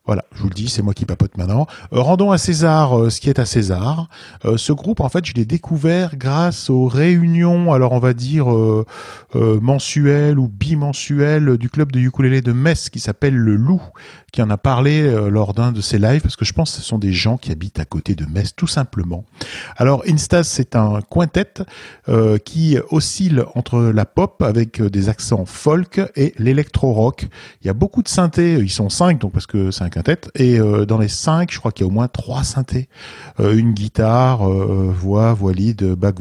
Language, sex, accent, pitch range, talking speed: French, male, French, 105-150 Hz, 215 wpm